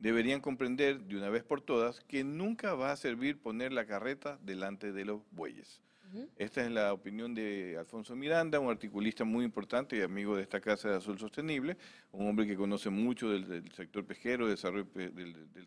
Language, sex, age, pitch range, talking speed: Spanish, male, 50-69, 100-135 Hz, 180 wpm